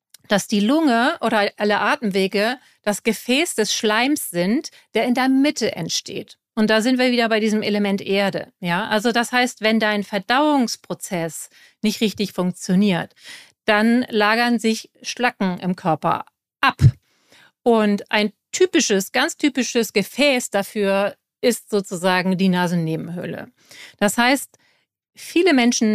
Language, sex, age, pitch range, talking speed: German, female, 40-59, 195-240 Hz, 130 wpm